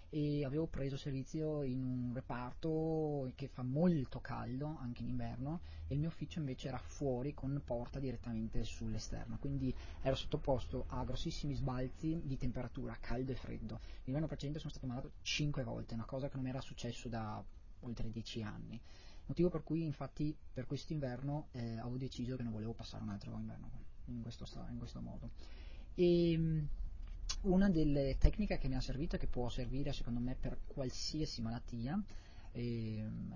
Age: 30-49